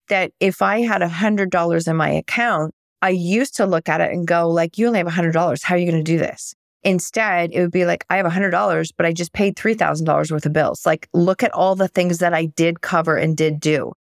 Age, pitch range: 30-49, 165-195 Hz